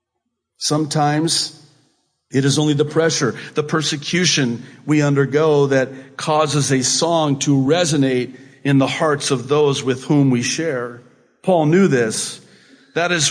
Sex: male